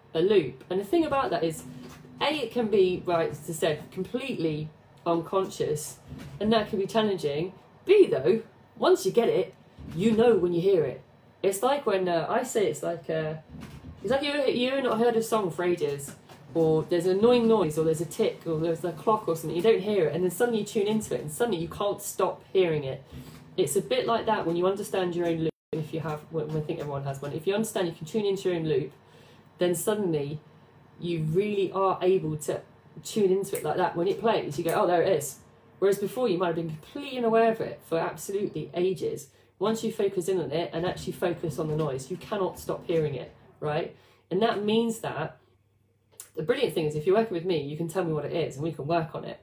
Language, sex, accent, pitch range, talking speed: English, female, British, 155-205 Hz, 235 wpm